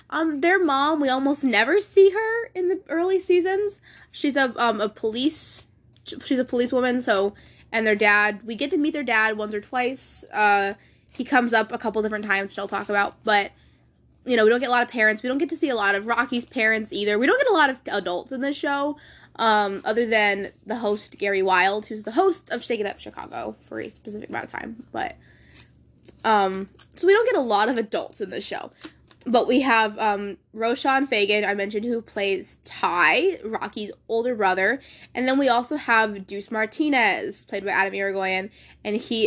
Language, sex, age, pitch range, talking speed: English, female, 10-29, 205-270 Hz, 210 wpm